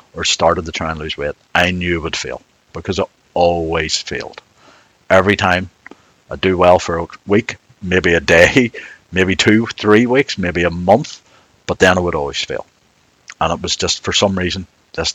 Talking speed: 190 wpm